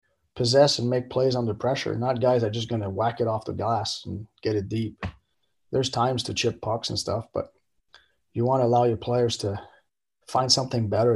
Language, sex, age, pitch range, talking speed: English, male, 30-49, 110-130 Hz, 215 wpm